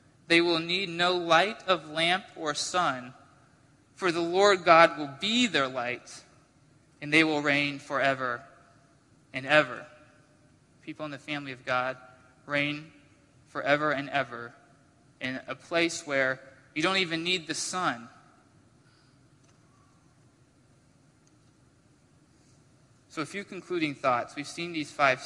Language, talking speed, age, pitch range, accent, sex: English, 125 wpm, 20-39, 140-170 Hz, American, male